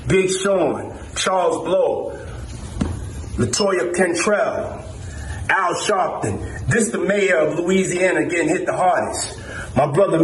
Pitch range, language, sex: 155-205 Hz, English, male